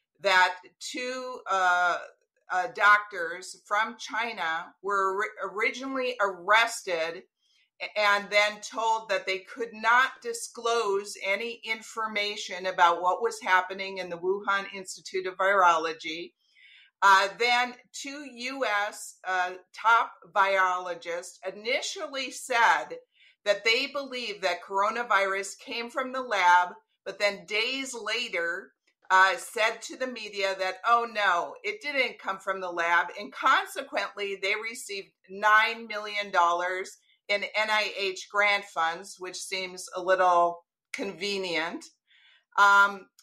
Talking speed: 115 wpm